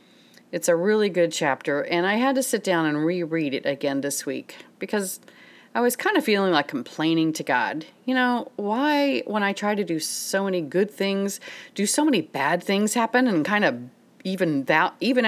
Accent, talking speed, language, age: American, 200 wpm, English, 40-59